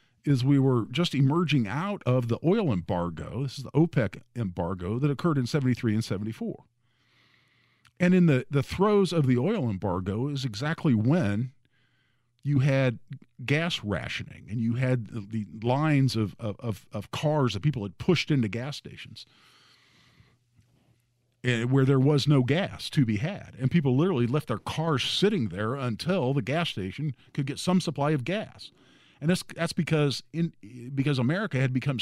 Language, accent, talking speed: English, American, 165 wpm